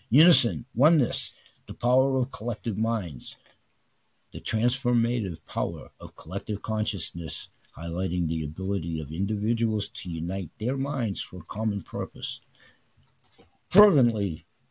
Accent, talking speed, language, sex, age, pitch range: American, 105 wpm, English, male, 60-79, 95-125 Hz